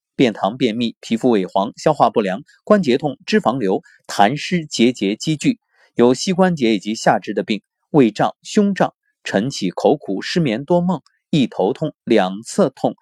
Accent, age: native, 30-49